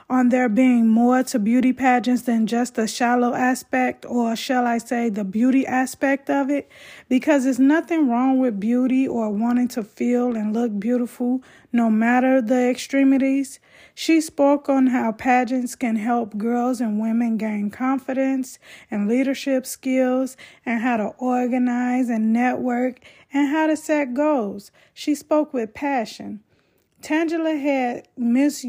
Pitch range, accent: 230-265 Hz, American